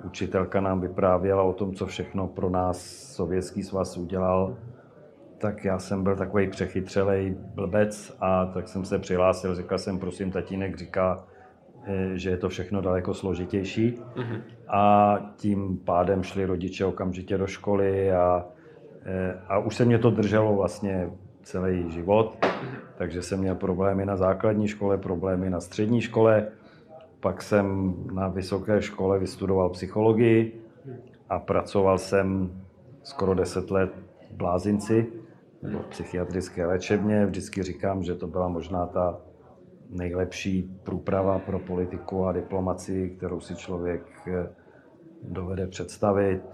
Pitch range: 90-105 Hz